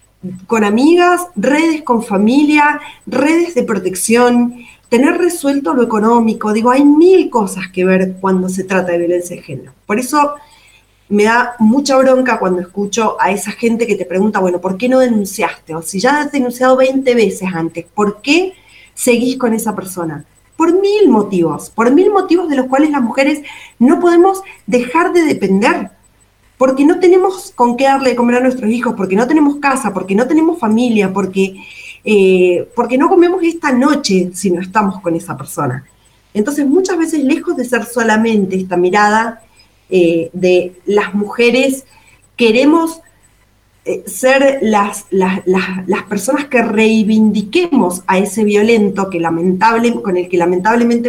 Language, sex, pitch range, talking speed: Spanish, female, 190-275 Hz, 160 wpm